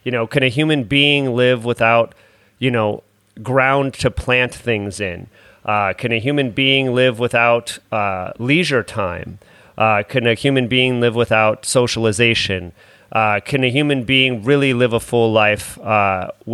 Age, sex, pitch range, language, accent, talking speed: 30-49, male, 105-130 Hz, English, American, 160 wpm